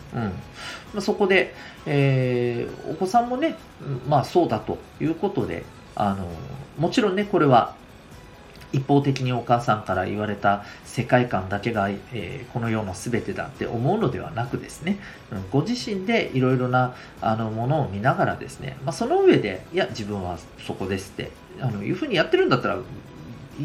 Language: Japanese